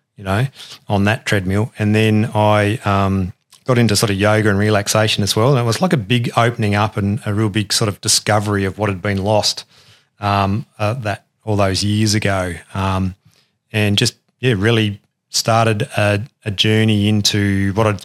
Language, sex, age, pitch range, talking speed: English, male, 30-49, 100-120 Hz, 185 wpm